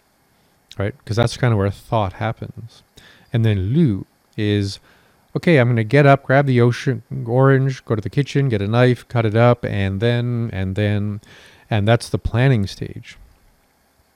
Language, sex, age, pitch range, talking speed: English, male, 40-59, 100-125 Hz, 175 wpm